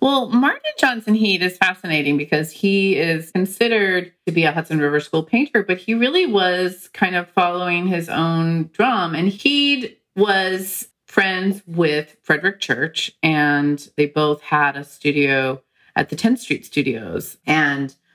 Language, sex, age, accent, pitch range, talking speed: English, female, 40-59, American, 140-180 Hz, 150 wpm